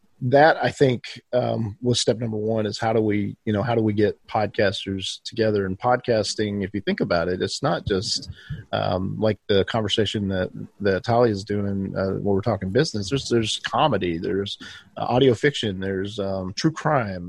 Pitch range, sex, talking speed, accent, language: 105-125 Hz, male, 190 wpm, American, English